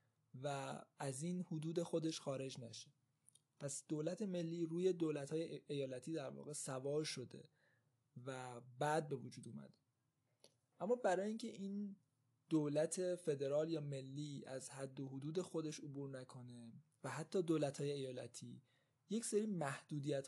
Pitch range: 135-170 Hz